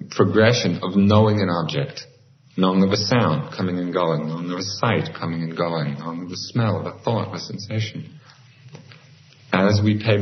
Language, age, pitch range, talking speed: English, 40-59, 95-130 Hz, 190 wpm